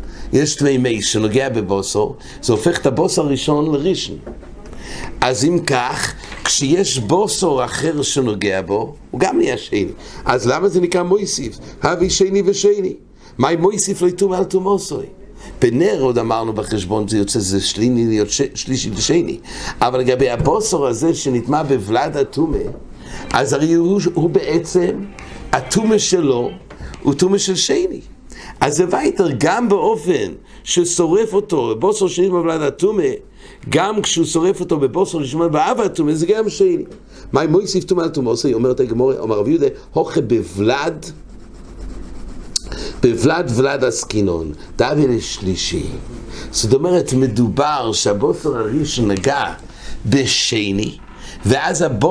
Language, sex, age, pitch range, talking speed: English, male, 60-79, 120-185 Hz, 120 wpm